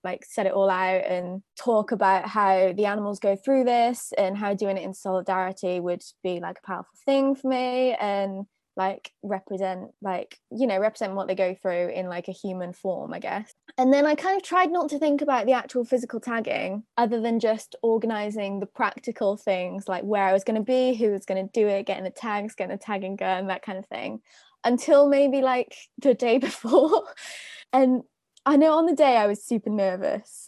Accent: British